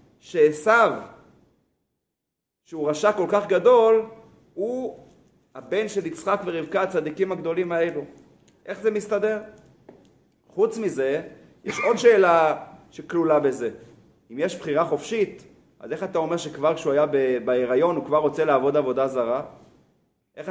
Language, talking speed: Hebrew, 125 wpm